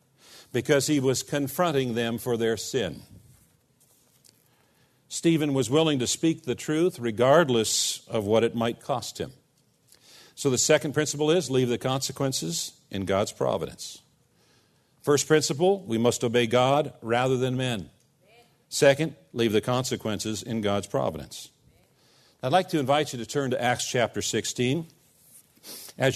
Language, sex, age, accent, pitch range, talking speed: English, male, 50-69, American, 125-170 Hz, 140 wpm